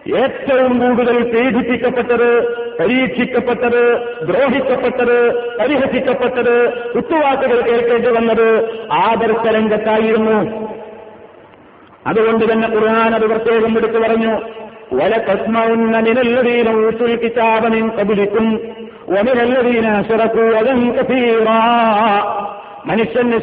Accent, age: native, 50-69